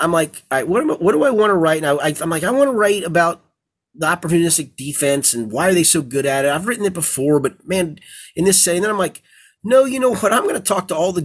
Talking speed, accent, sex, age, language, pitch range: 290 wpm, American, male, 30-49, English, 140-175 Hz